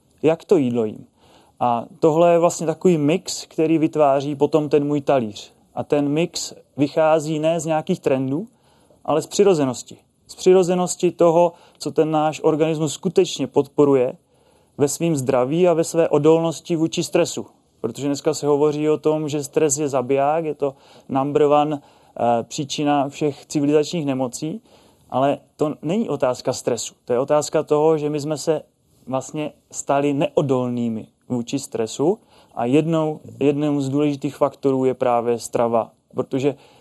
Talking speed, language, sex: 150 wpm, Czech, male